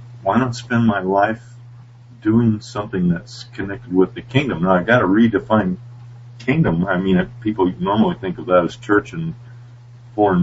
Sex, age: male, 50-69